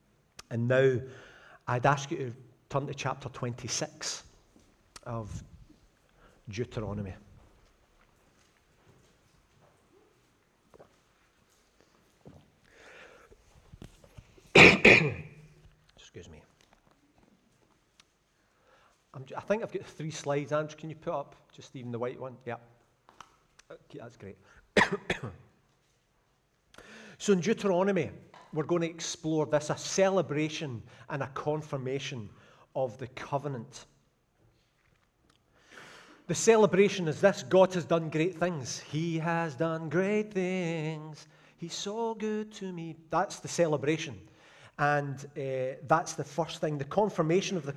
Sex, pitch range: male, 130-165 Hz